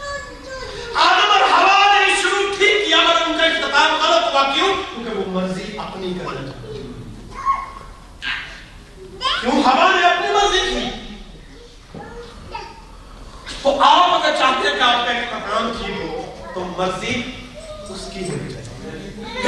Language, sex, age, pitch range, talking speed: Urdu, male, 40-59, 215-330 Hz, 55 wpm